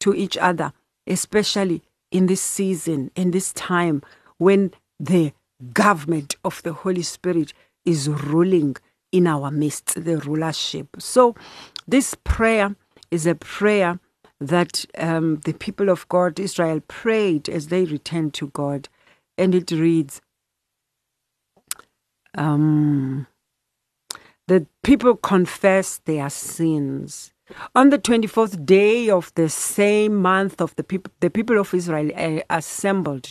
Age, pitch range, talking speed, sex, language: 60-79, 150-195 Hz, 125 wpm, female, English